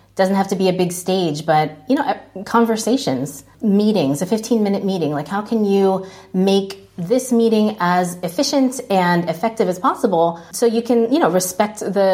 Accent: American